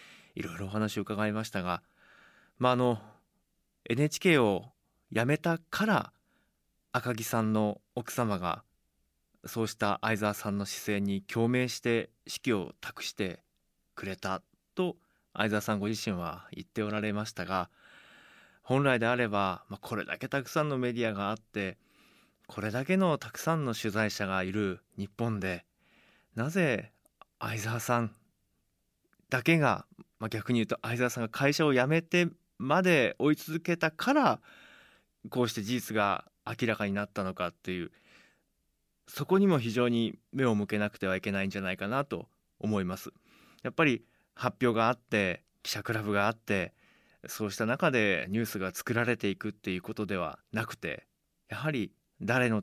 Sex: male